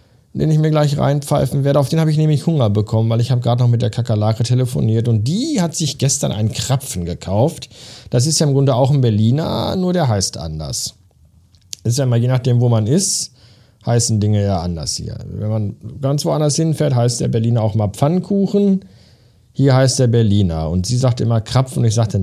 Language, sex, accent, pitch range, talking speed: German, male, German, 105-140 Hz, 215 wpm